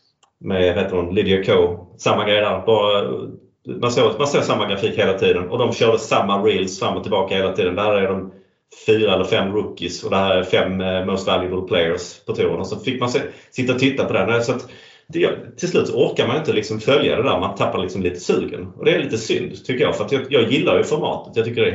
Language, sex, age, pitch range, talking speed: Swedish, male, 30-49, 100-150 Hz, 240 wpm